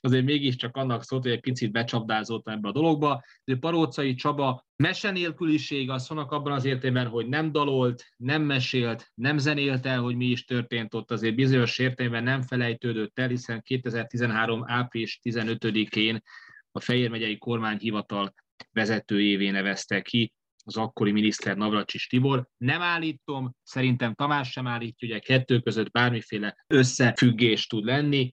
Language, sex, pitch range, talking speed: Hungarian, male, 115-130 Hz, 145 wpm